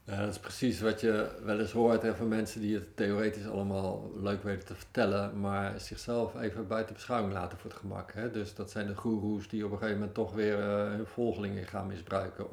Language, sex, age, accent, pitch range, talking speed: Dutch, male, 50-69, Dutch, 100-115 Hz, 210 wpm